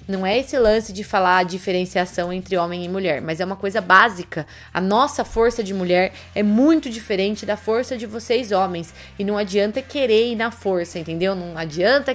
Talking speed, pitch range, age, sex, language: 200 wpm, 195-255 Hz, 20-39, female, Portuguese